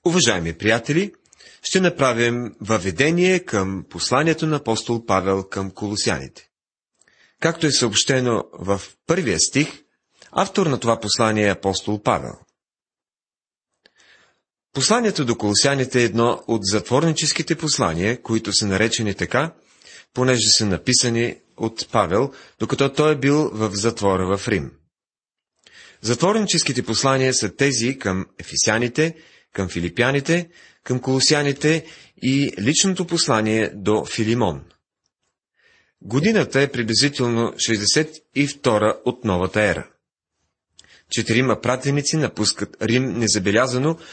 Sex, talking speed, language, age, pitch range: male, 105 wpm, Bulgarian, 30-49, 105-140 Hz